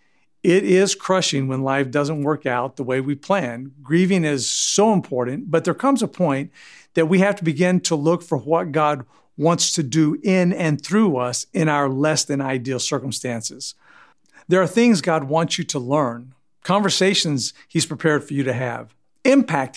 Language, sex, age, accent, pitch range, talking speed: English, male, 50-69, American, 135-170 Hz, 180 wpm